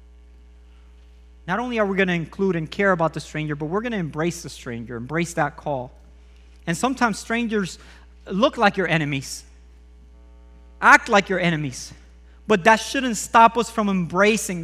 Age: 40-59